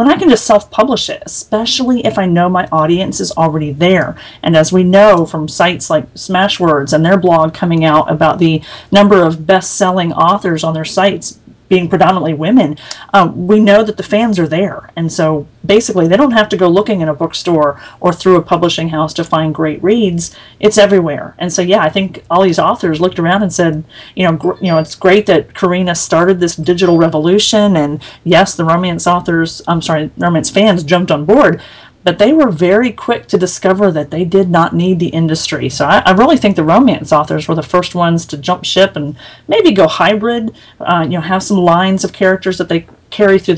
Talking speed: 210 wpm